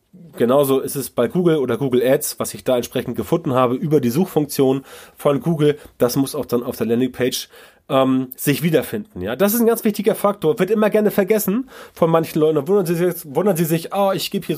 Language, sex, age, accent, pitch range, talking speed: German, male, 30-49, German, 140-195 Hz, 220 wpm